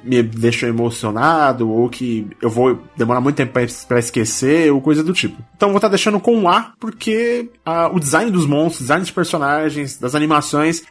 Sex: male